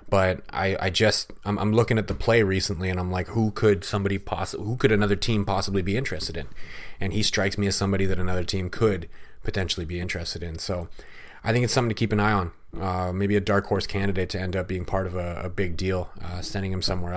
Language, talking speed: English, 240 wpm